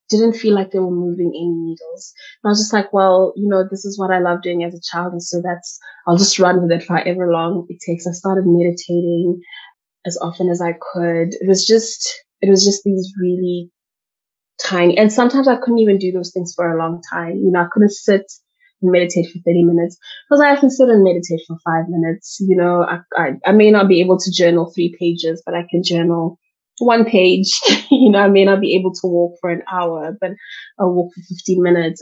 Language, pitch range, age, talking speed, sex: English, 170-210 Hz, 20-39, 235 wpm, female